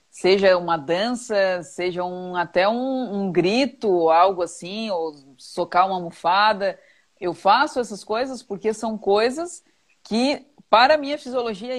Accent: Brazilian